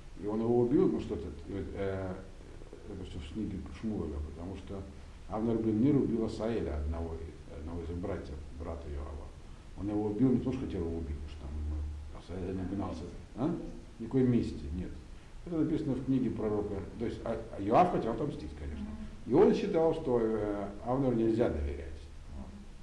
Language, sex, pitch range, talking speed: Russian, male, 80-125 Hz, 175 wpm